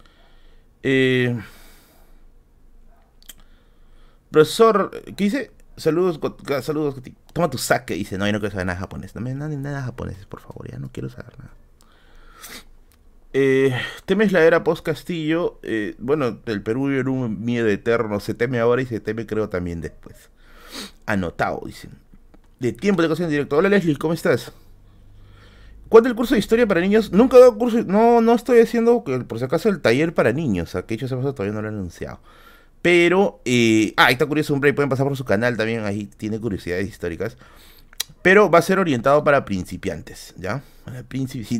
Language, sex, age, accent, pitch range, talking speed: Spanish, male, 30-49, Venezuelan, 105-165 Hz, 185 wpm